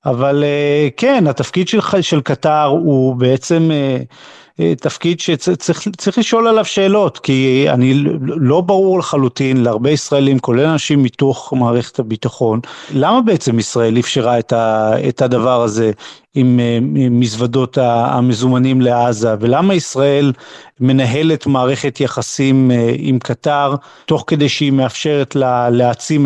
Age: 40-59